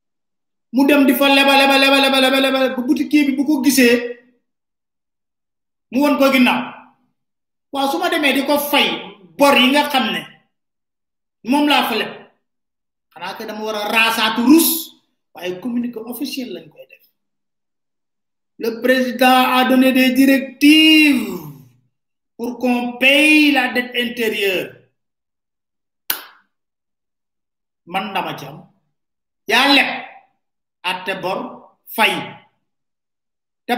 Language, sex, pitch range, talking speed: French, male, 195-275 Hz, 35 wpm